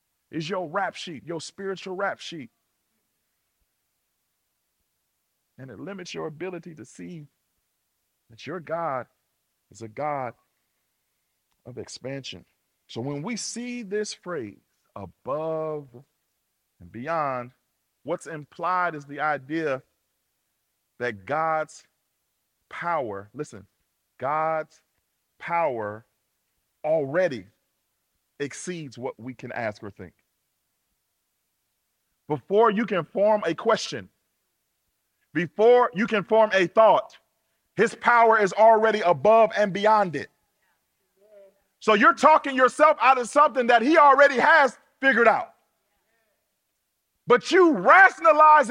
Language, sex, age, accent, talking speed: English, male, 40-59, American, 105 wpm